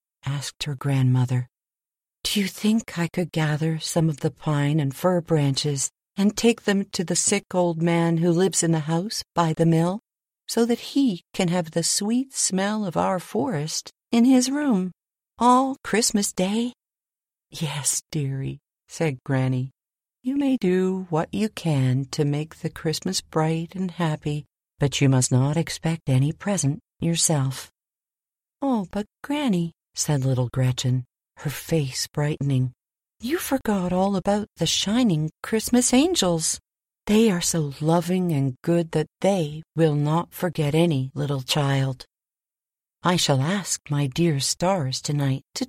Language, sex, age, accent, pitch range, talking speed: English, female, 50-69, American, 145-190 Hz, 150 wpm